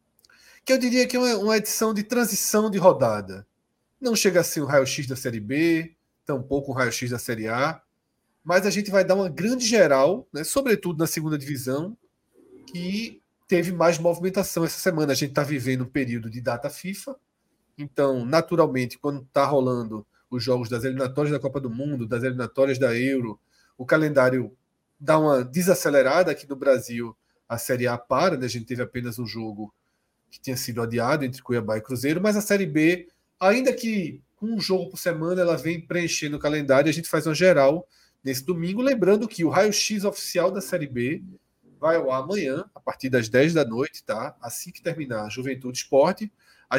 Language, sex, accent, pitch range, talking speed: Portuguese, male, Brazilian, 130-180 Hz, 185 wpm